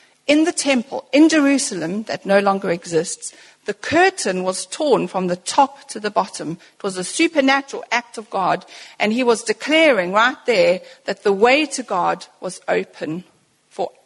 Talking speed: 170 wpm